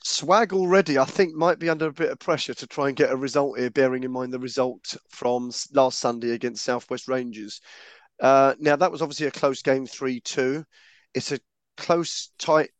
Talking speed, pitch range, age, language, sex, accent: 200 wpm, 120-140 Hz, 30-49, English, male, British